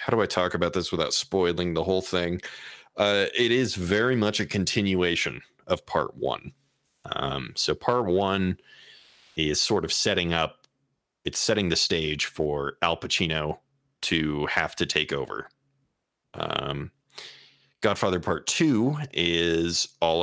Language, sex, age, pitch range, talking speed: English, male, 30-49, 75-105 Hz, 140 wpm